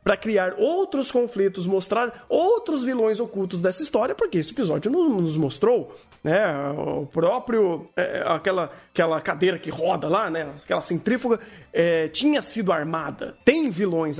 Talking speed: 145 wpm